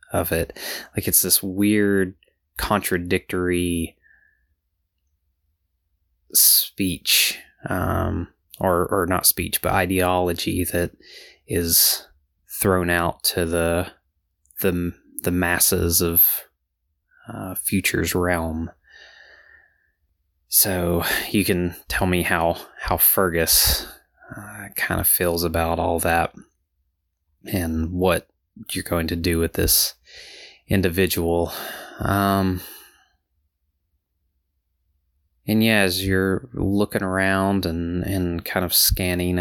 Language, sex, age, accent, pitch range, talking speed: English, male, 20-39, American, 80-90 Hz, 95 wpm